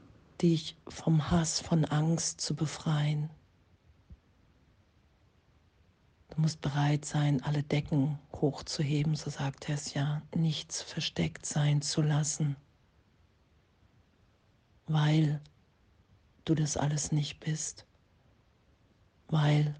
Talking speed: 90 wpm